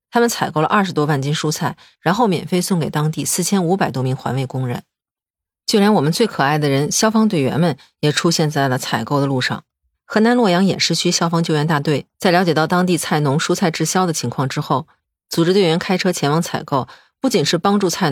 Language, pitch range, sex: Chinese, 135-185 Hz, female